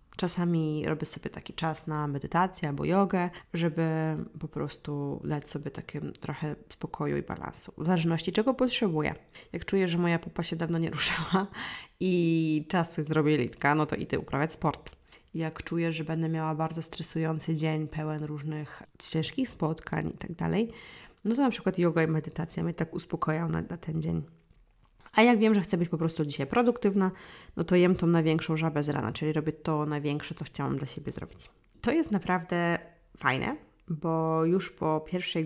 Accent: native